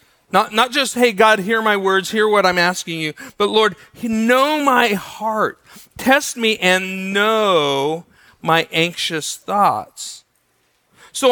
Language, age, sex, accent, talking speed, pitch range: English, 40-59, male, American, 140 wpm, 175-230 Hz